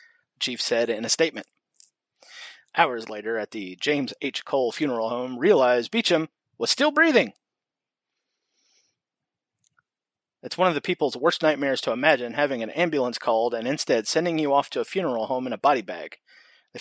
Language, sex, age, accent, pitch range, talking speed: English, male, 30-49, American, 130-200 Hz, 165 wpm